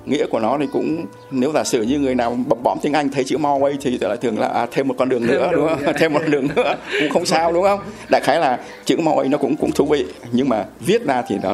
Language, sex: Vietnamese, male